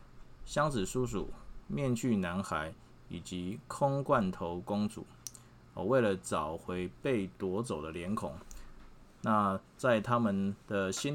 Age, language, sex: 20-39, Chinese, male